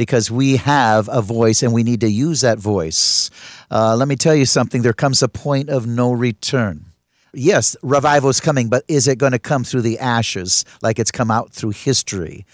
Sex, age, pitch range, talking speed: male, 50-69, 115-145 Hz, 210 wpm